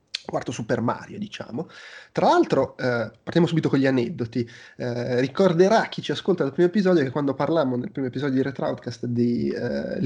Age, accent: 20-39, native